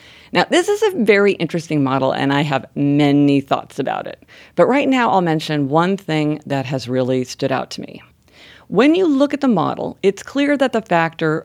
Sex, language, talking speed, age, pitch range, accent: female, English, 205 wpm, 50-69, 150-225 Hz, American